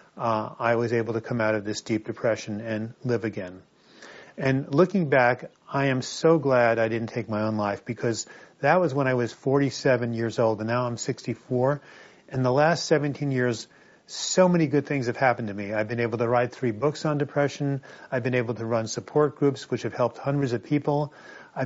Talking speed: 225 wpm